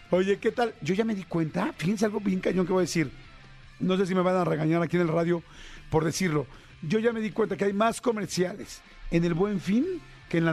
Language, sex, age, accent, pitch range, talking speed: Spanish, male, 50-69, Mexican, 165-205 Hz, 255 wpm